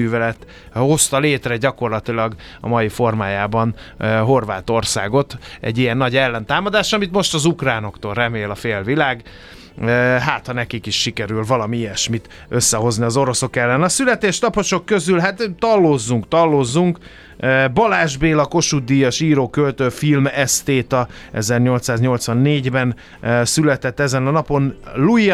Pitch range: 115-140 Hz